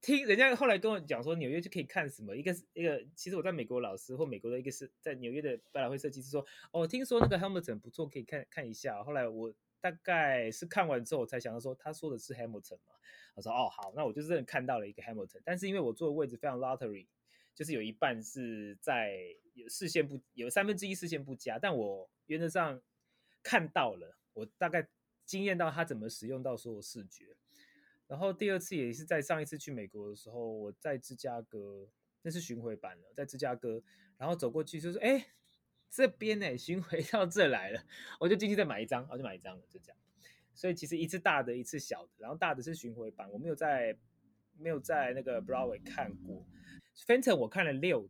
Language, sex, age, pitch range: Chinese, male, 20-39, 120-180 Hz